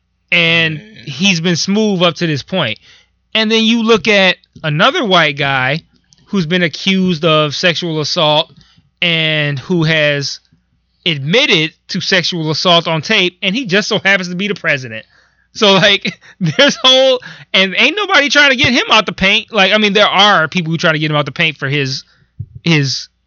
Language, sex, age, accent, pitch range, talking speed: English, male, 20-39, American, 140-180 Hz, 185 wpm